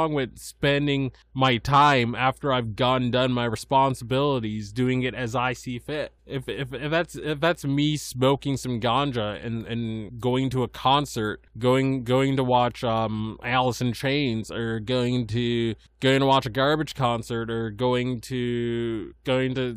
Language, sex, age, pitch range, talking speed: English, male, 20-39, 115-145 Hz, 165 wpm